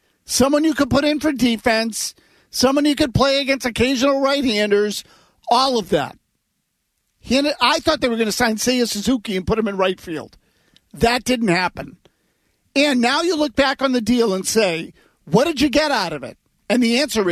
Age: 50-69